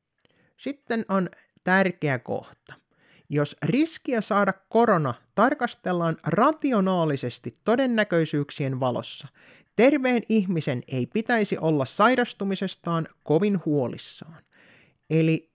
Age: 30-49